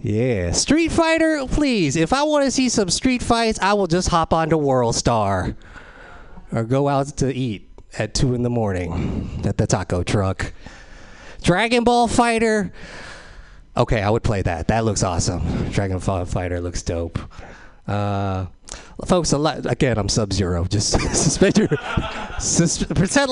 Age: 20-39